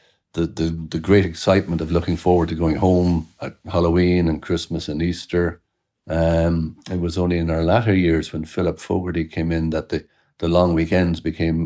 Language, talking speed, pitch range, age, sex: English, 185 wpm, 80-95 Hz, 60-79, male